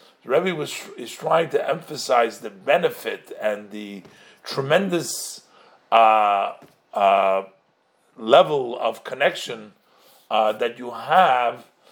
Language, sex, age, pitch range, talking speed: English, male, 50-69, 140-225 Hz, 95 wpm